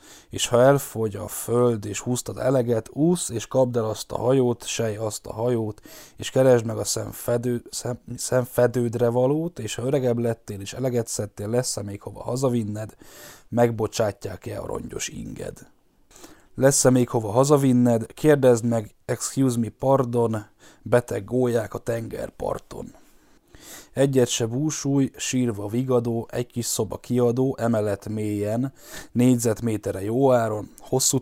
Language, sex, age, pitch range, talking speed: Hungarian, male, 10-29, 110-130 Hz, 135 wpm